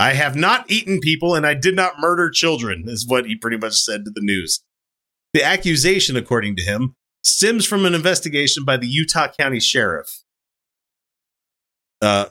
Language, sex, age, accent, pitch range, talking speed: English, male, 30-49, American, 105-140 Hz, 170 wpm